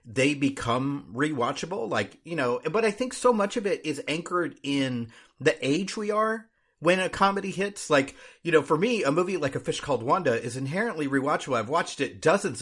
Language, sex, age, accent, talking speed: English, male, 30-49, American, 205 wpm